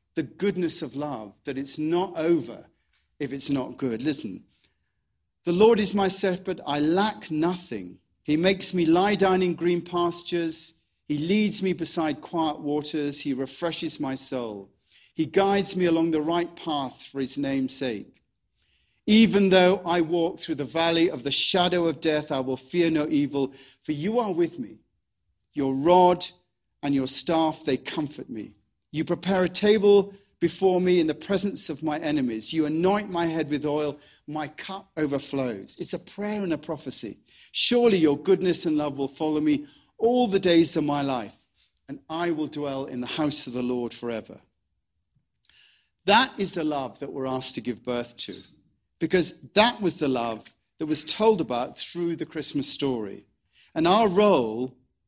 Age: 40-59